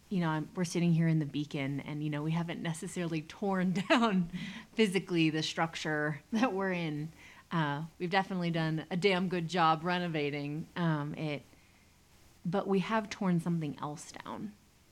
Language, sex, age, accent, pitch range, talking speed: English, female, 30-49, American, 150-175 Hz, 165 wpm